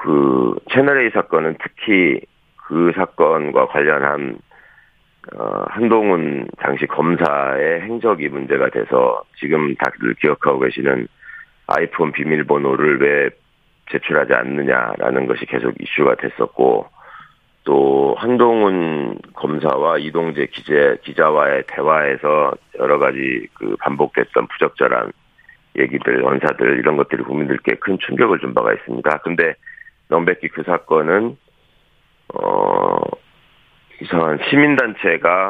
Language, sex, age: Korean, male, 40-59